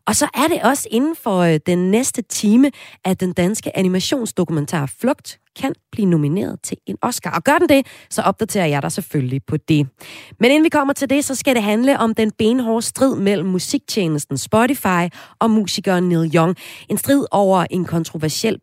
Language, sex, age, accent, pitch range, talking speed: Danish, female, 30-49, native, 160-230 Hz, 185 wpm